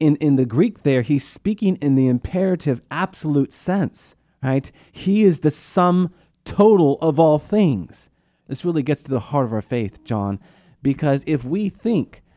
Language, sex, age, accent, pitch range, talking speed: English, male, 30-49, American, 130-160 Hz, 170 wpm